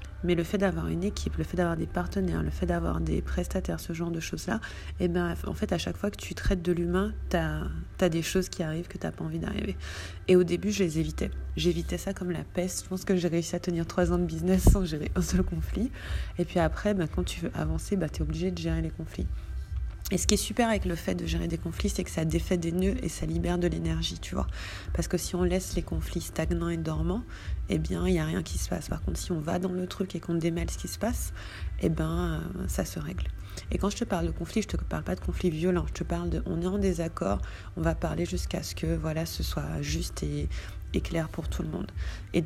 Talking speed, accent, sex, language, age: 270 wpm, French, female, French, 30-49